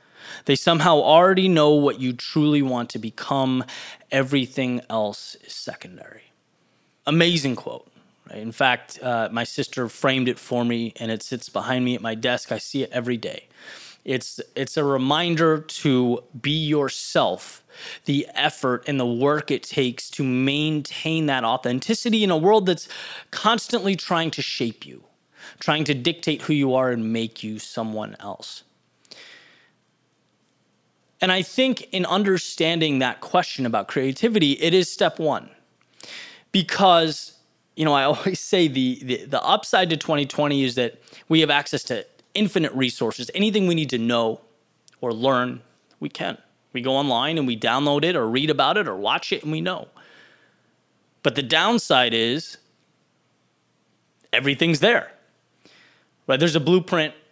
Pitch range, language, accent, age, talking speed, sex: 125-165 Hz, English, American, 20-39, 150 wpm, male